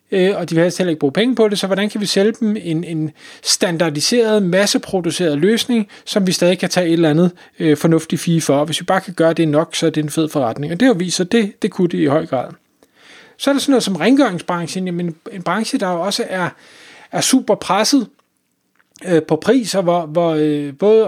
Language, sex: Danish, male